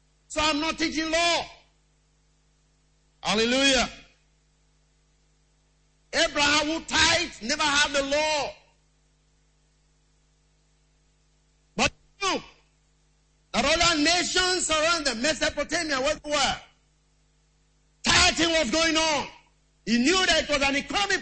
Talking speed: 100 wpm